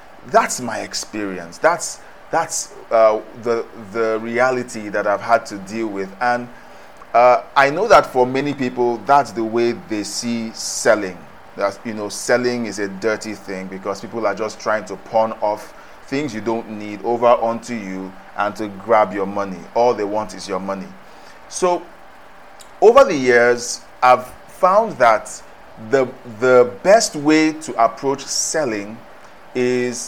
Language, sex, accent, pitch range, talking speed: English, male, Nigerian, 110-140 Hz, 155 wpm